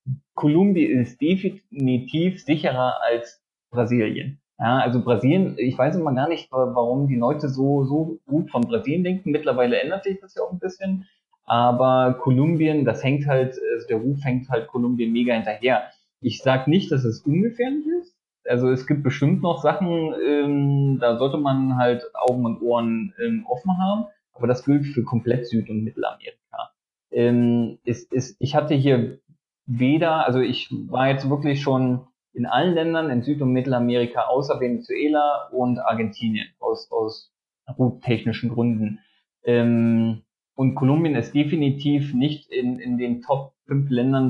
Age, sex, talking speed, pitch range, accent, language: 20-39, male, 155 wpm, 120-150 Hz, German, German